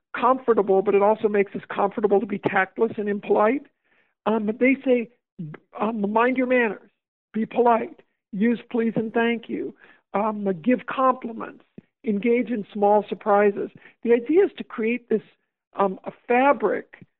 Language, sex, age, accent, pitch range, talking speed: English, male, 60-79, American, 210-240 Hz, 150 wpm